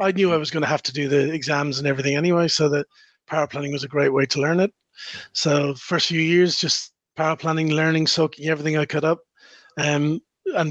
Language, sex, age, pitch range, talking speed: English, male, 30-49, 145-170 Hz, 225 wpm